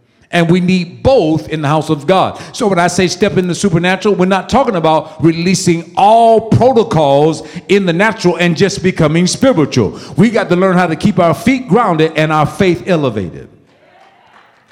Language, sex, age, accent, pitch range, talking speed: English, male, 50-69, American, 170-215 Hz, 185 wpm